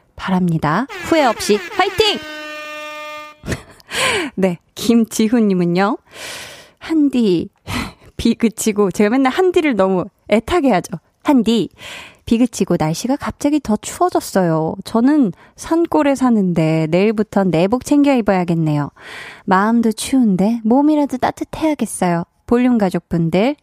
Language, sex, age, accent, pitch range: Korean, female, 20-39, native, 180-265 Hz